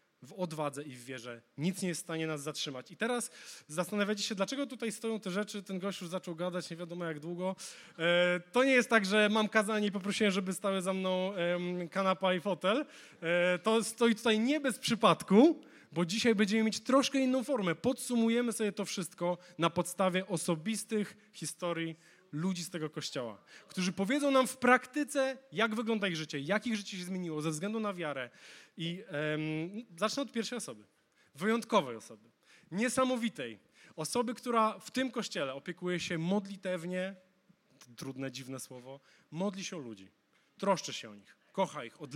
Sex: male